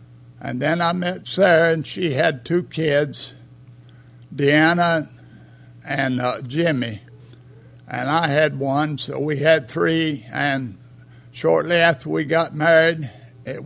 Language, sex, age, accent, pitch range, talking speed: English, male, 60-79, American, 125-160 Hz, 125 wpm